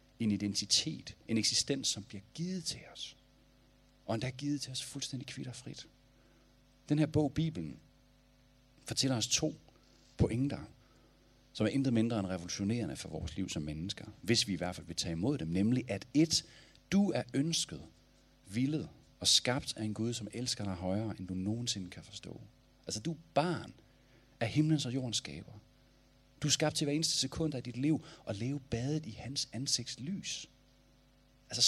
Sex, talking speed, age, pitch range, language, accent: male, 170 wpm, 40-59, 105-135 Hz, Danish, native